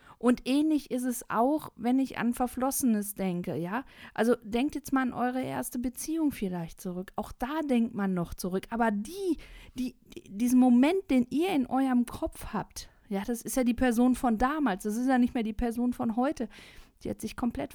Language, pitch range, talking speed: German, 195-255 Hz, 205 wpm